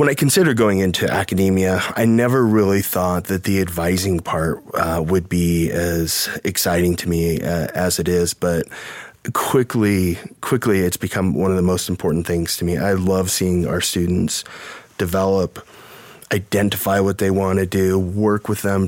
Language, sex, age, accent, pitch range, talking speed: English, male, 30-49, American, 90-105 Hz, 170 wpm